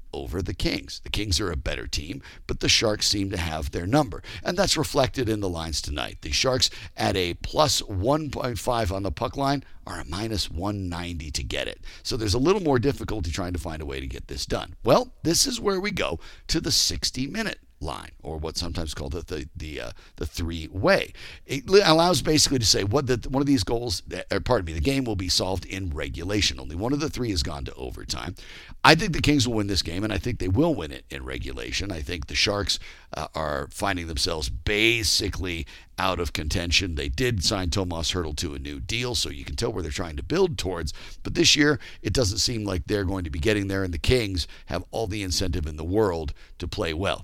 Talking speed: 230 wpm